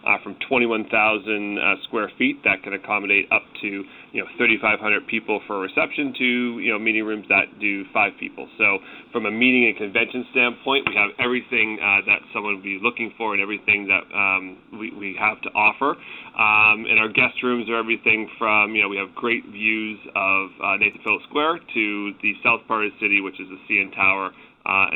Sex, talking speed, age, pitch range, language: male, 205 wpm, 30-49, 100-120 Hz, English